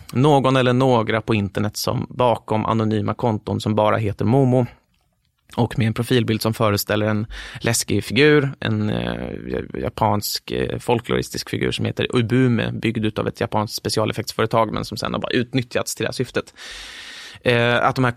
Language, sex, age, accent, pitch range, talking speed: English, male, 20-39, Swedish, 105-125 Hz, 160 wpm